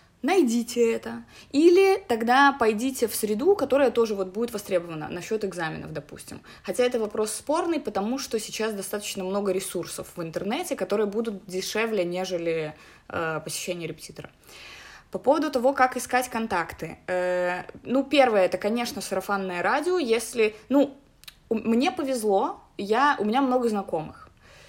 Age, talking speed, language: 20-39, 130 wpm, Russian